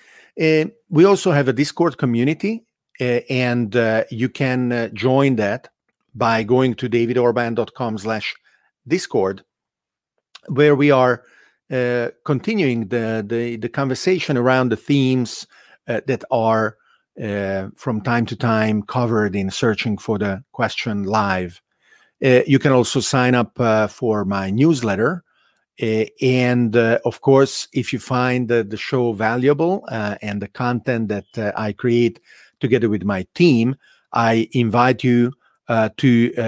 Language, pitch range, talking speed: English, 110-135 Hz, 140 wpm